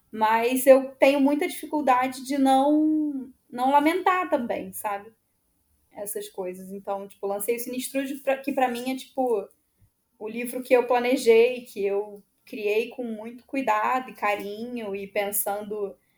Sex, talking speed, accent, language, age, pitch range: female, 140 wpm, Brazilian, Portuguese, 10-29, 205-260 Hz